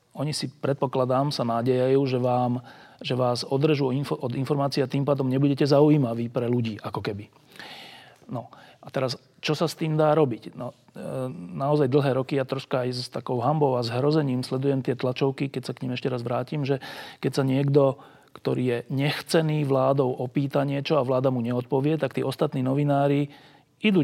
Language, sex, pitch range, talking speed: Slovak, male, 125-150 Hz, 175 wpm